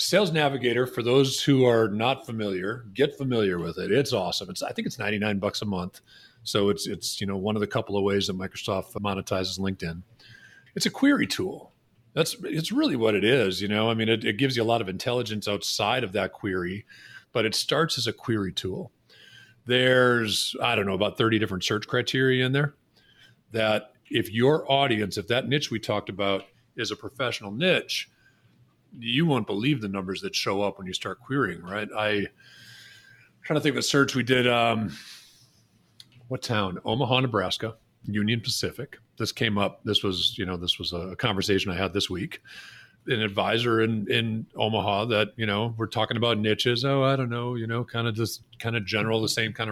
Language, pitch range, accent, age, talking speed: English, 105-125 Hz, American, 40-59, 200 wpm